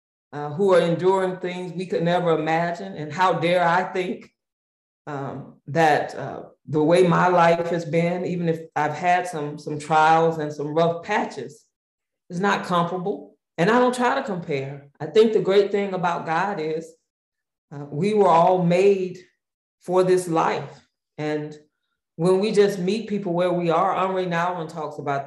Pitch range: 155-185 Hz